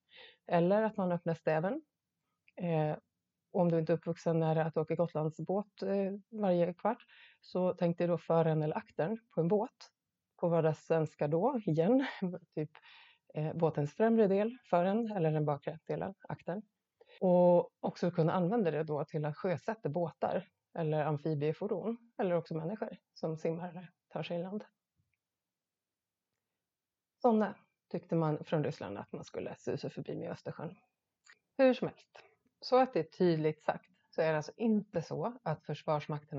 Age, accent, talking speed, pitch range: 30-49, native, 160 wpm, 155-190 Hz